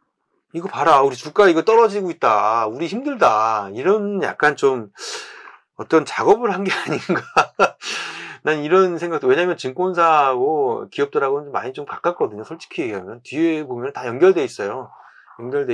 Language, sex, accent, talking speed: English, male, Korean, 125 wpm